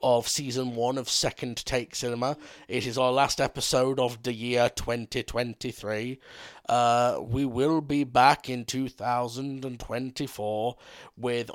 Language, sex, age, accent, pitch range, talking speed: English, male, 30-49, British, 115-140 Hz, 125 wpm